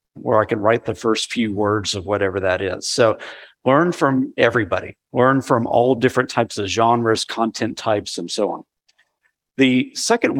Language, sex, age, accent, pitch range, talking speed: English, male, 50-69, American, 115-150 Hz, 175 wpm